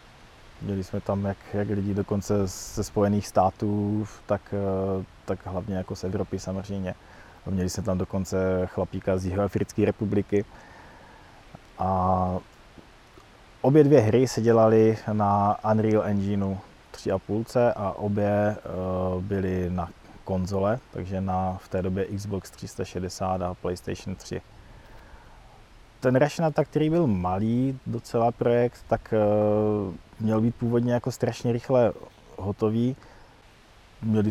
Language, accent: Czech, native